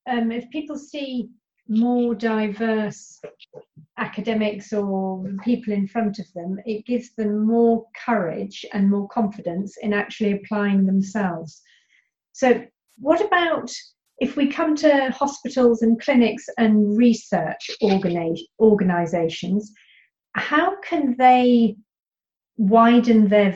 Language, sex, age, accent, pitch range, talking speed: English, female, 40-59, British, 205-245 Hz, 110 wpm